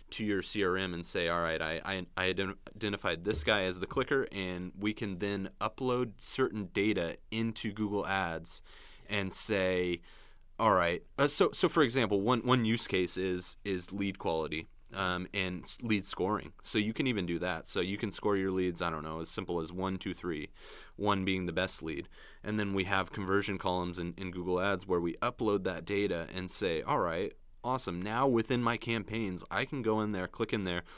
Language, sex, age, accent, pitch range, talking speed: English, male, 30-49, American, 85-105 Hz, 205 wpm